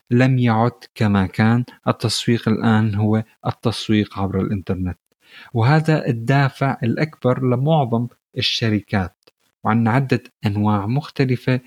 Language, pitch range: Arabic, 100-125 Hz